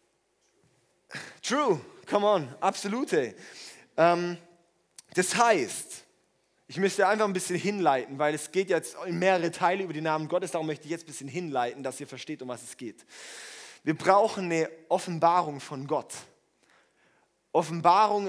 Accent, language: German, German